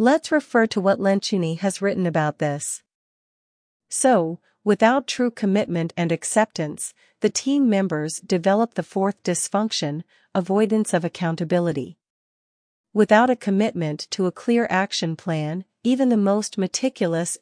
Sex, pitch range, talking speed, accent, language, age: female, 170-210 Hz, 125 wpm, American, Finnish, 40-59